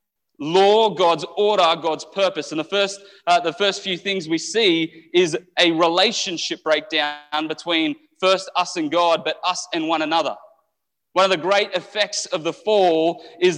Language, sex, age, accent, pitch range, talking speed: English, male, 30-49, Australian, 160-200 Hz, 170 wpm